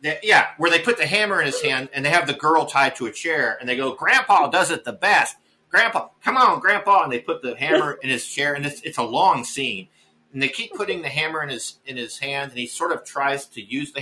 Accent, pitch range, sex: American, 105-150 Hz, male